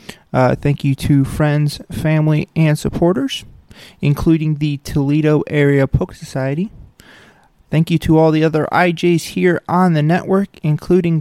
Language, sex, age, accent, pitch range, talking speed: English, male, 30-49, American, 145-185 Hz, 140 wpm